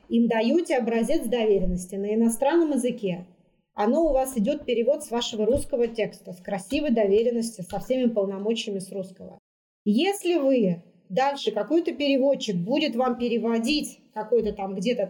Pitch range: 210-265 Hz